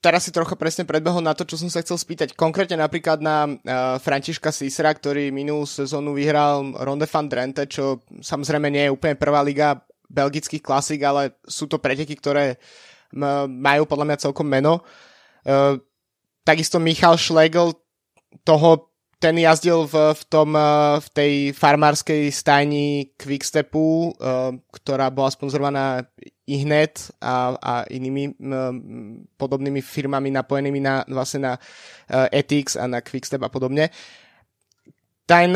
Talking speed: 140 wpm